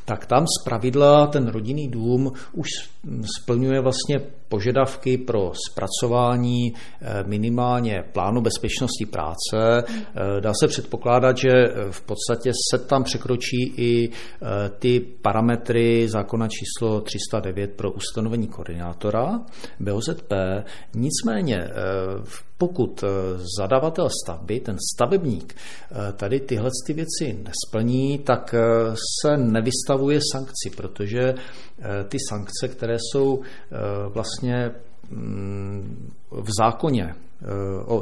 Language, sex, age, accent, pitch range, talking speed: Czech, male, 50-69, native, 100-125 Hz, 95 wpm